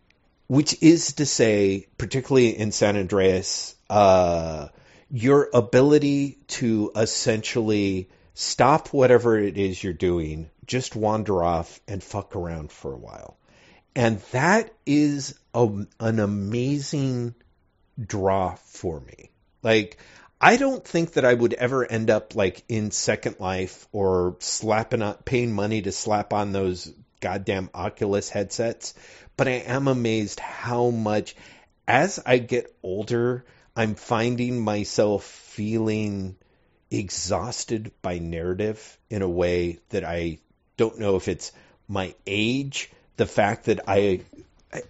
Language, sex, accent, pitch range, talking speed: English, male, American, 95-125 Hz, 125 wpm